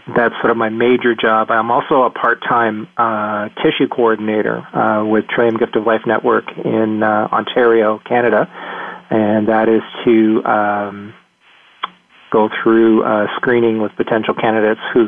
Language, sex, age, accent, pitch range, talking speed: English, male, 40-59, American, 105-115 Hz, 145 wpm